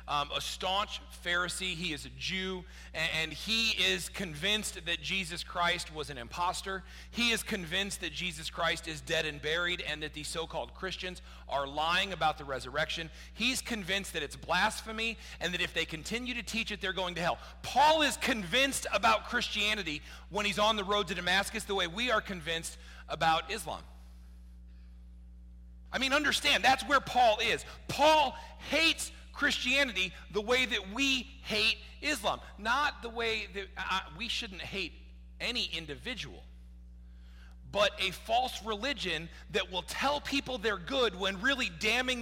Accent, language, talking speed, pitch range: American, English, 160 wpm, 160-235 Hz